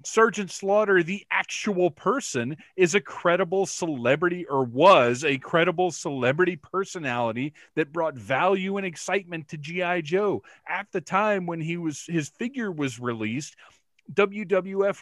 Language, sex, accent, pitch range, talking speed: English, male, American, 145-200 Hz, 135 wpm